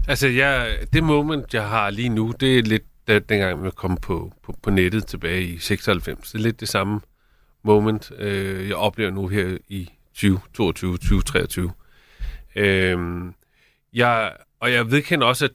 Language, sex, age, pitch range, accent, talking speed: Danish, male, 30-49, 95-120 Hz, native, 170 wpm